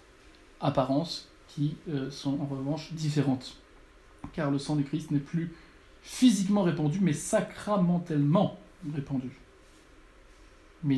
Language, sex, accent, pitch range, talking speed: French, male, French, 135-160 Hz, 110 wpm